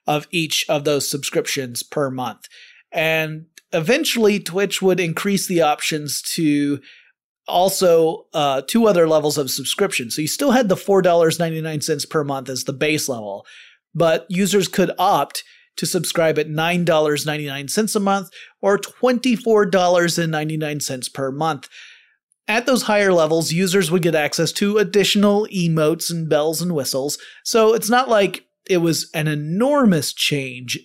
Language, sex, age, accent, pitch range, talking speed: English, male, 30-49, American, 150-190 Hz, 140 wpm